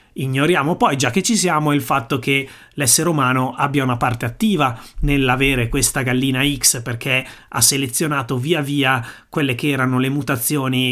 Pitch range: 125-155 Hz